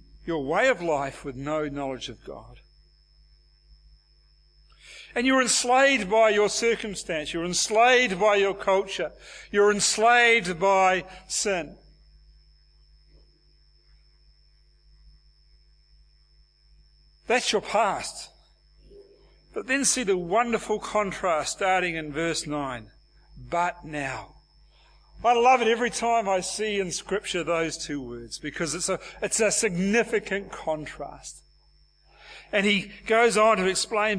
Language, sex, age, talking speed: English, male, 60-79, 110 wpm